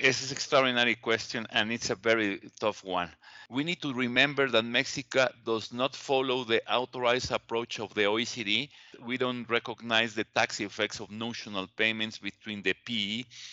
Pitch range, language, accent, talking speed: 115-130 Hz, English, Mexican, 165 wpm